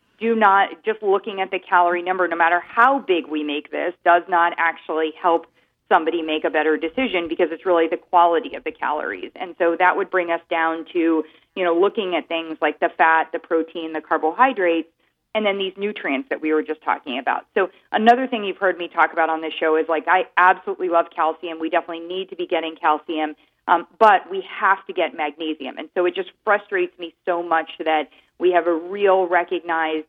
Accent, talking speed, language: American, 215 wpm, English